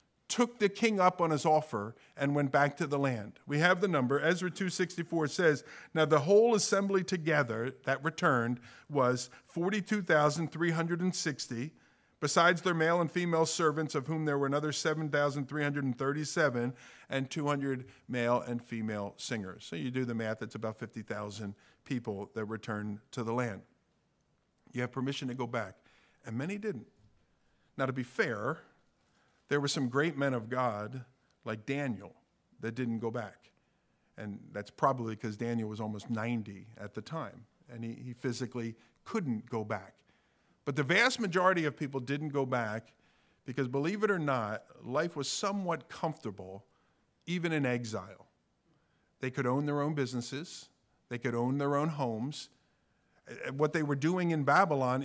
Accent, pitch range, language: American, 120-160 Hz, English